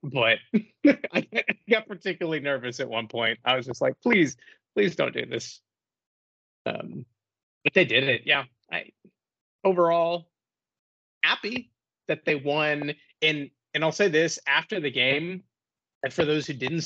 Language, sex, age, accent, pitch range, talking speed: English, male, 30-49, American, 115-145 Hz, 150 wpm